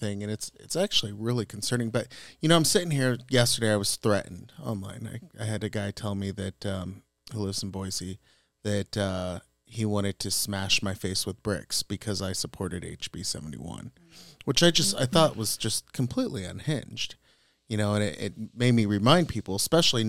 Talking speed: 190 wpm